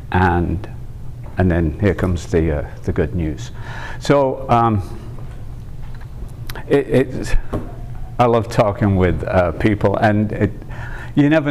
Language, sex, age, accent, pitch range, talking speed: English, male, 50-69, British, 100-120 Hz, 120 wpm